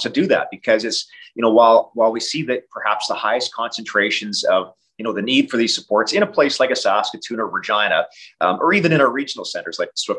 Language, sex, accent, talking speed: English, male, American, 240 wpm